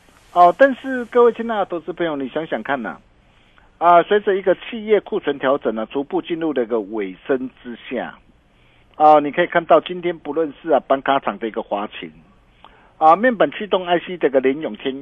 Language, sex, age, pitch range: Chinese, male, 50-69, 130-195 Hz